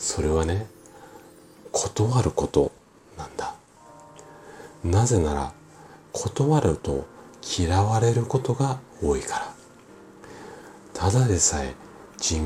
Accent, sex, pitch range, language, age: native, male, 80-120 Hz, Japanese, 40-59